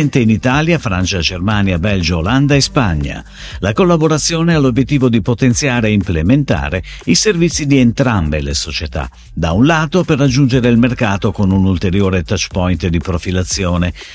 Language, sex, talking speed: Italian, male, 155 wpm